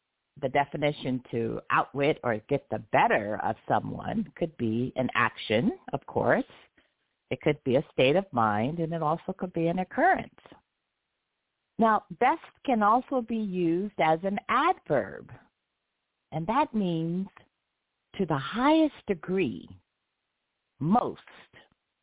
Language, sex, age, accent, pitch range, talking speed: English, female, 50-69, American, 130-190 Hz, 130 wpm